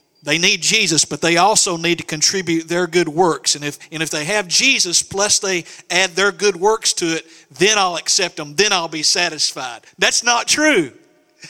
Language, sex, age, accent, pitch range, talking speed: English, male, 50-69, American, 180-225 Hz, 195 wpm